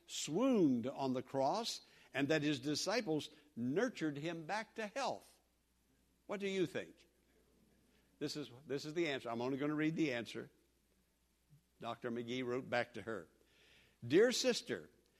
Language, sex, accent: English, male, American